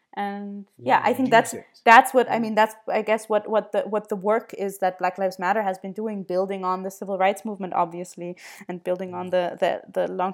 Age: 20-39